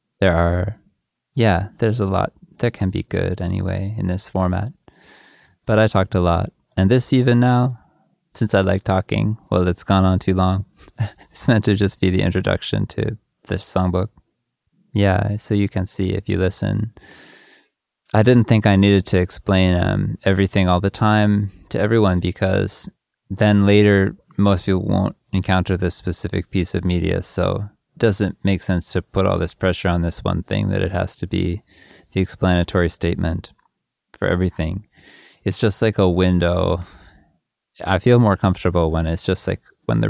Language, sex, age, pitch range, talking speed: English, male, 20-39, 90-105 Hz, 170 wpm